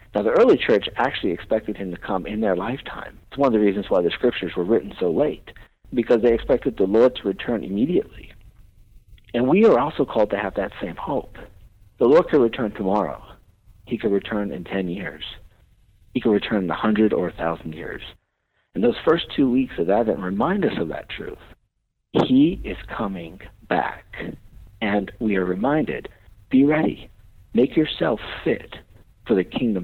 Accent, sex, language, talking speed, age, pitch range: American, male, English, 180 wpm, 50-69, 95-120 Hz